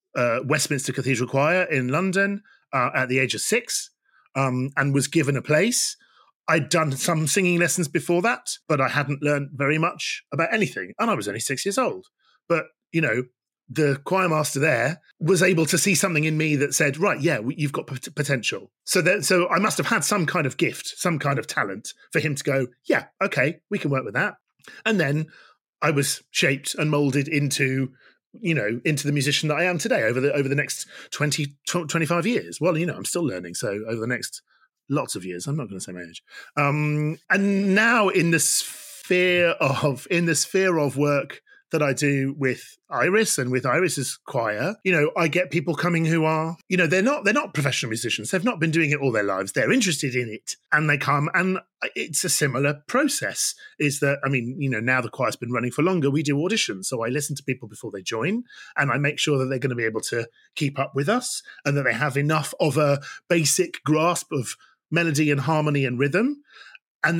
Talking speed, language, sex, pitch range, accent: 220 wpm, English, male, 135-180 Hz, British